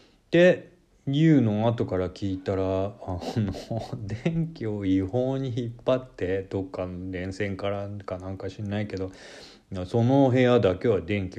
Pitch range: 95-115 Hz